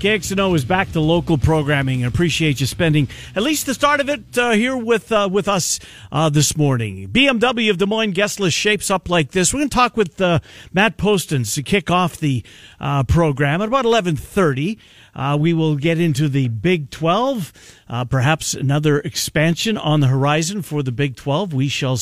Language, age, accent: English, 50-69, American